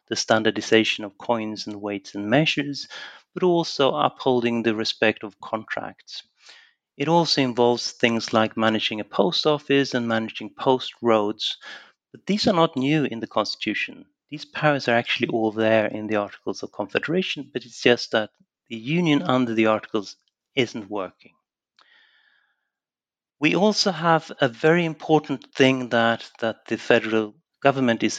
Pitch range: 110-140 Hz